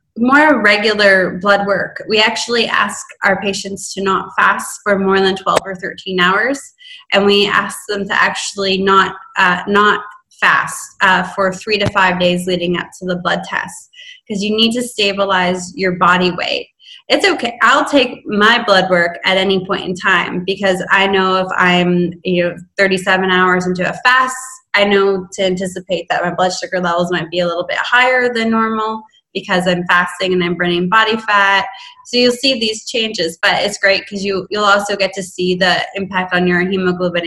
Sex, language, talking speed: female, English, 190 wpm